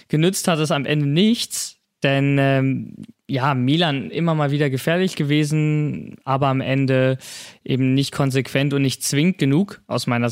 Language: German